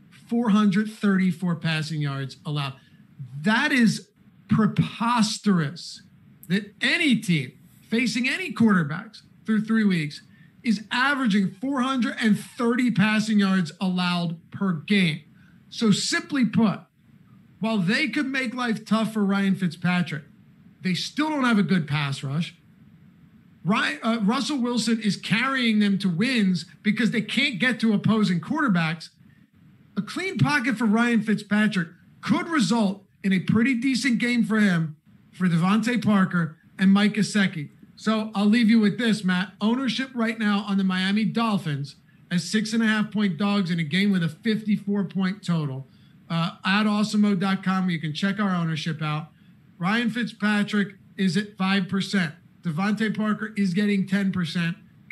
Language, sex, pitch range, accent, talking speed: English, male, 180-220 Hz, American, 135 wpm